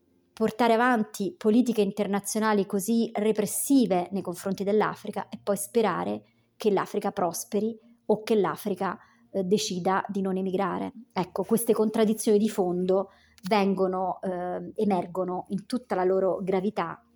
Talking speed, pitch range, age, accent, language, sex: 120 wpm, 190-220 Hz, 30-49, native, Italian, male